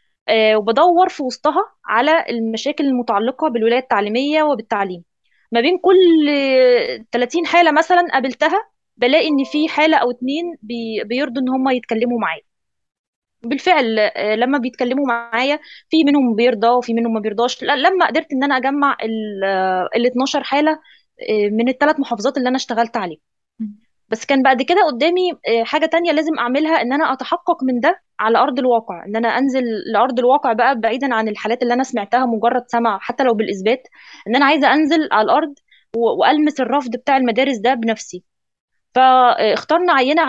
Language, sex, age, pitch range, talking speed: Arabic, female, 20-39, 230-300 Hz, 150 wpm